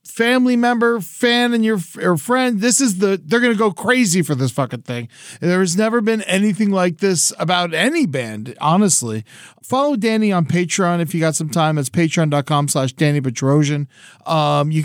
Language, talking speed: English, 185 wpm